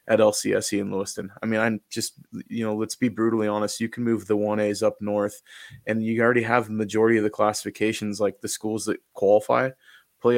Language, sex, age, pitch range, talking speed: English, male, 20-39, 105-110 Hz, 210 wpm